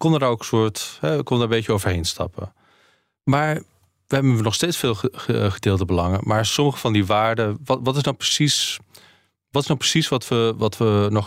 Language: Dutch